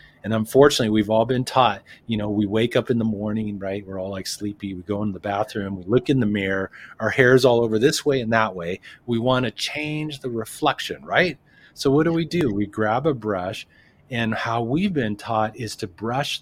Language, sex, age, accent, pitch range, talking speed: English, male, 30-49, American, 105-140 Hz, 225 wpm